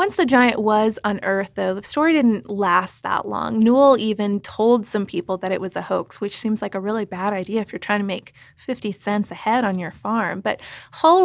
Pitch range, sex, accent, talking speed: 195-230 Hz, female, American, 225 wpm